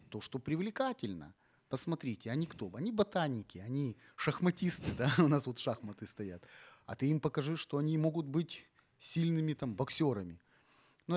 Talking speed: 150 wpm